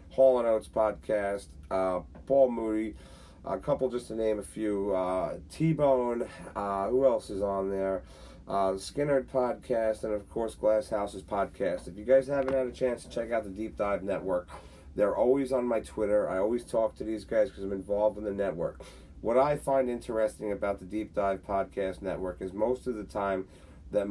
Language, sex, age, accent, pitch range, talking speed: English, male, 40-59, American, 95-125 Hz, 195 wpm